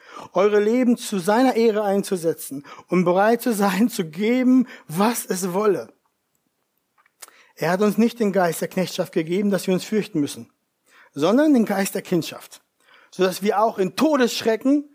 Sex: male